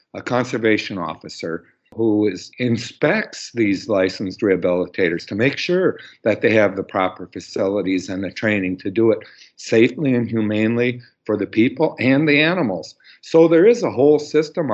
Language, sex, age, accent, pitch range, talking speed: English, male, 50-69, American, 110-155 Hz, 155 wpm